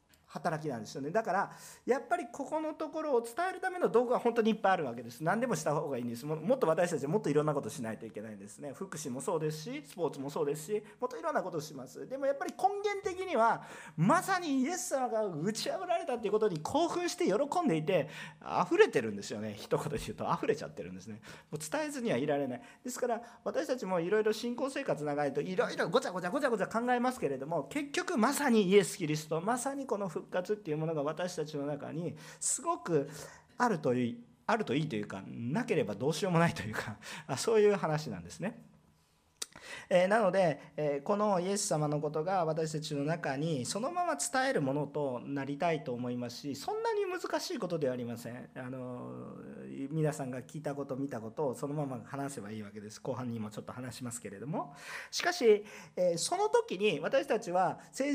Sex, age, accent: male, 40-59, native